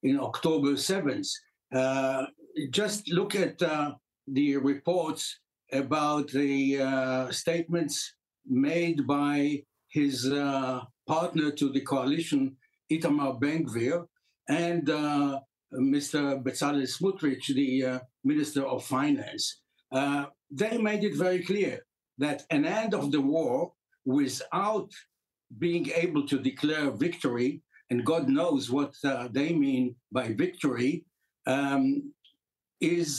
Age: 60-79